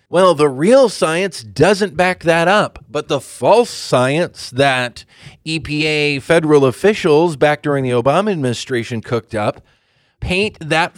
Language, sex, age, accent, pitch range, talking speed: English, male, 30-49, American, 130-175 Hz, 135 wpm